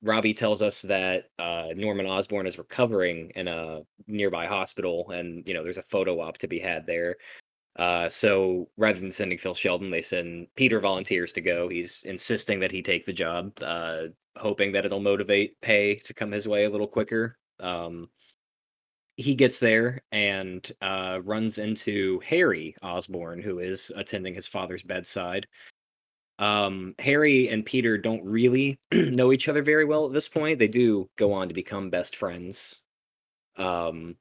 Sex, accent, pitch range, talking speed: male, American, 95-110 Hz, 170 wpm